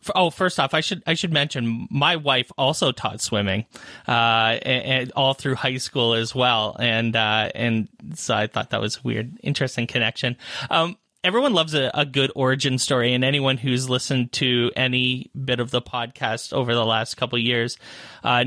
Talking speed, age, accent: 190 wpm, 30-49, American